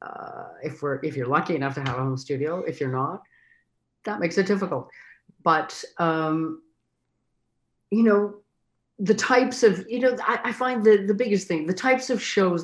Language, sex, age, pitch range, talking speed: English, female, 50-69, 145-210 Hz, 185 wpm